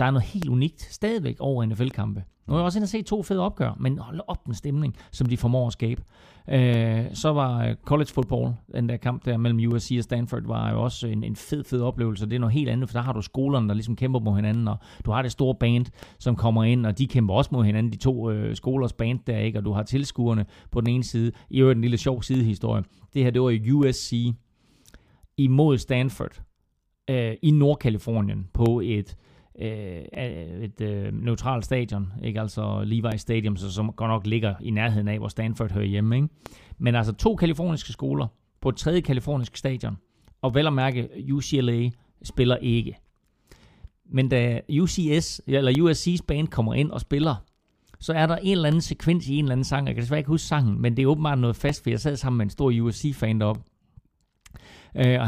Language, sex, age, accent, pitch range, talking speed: Danish, male, 30-49, native, 110-135 Hz, 210 wpm